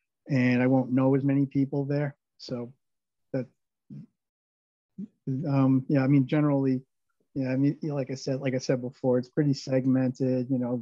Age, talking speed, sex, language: 40-59, 165 wpm, male, English